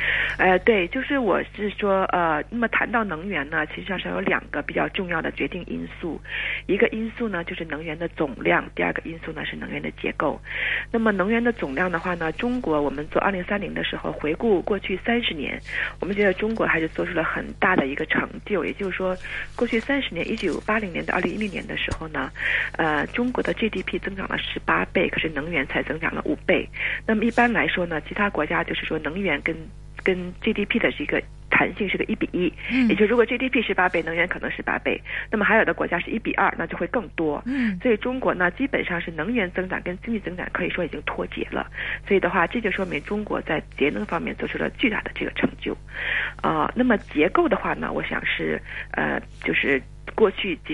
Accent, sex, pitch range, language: native, female, 170-230 Hz, Chinese